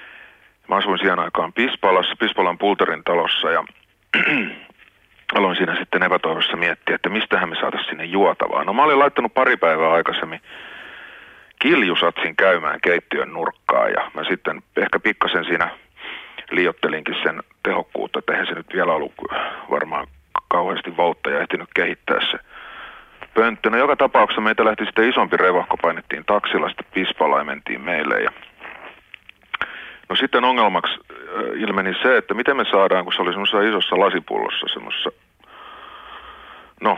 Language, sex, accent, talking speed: Finnish, male, native, 135 wpm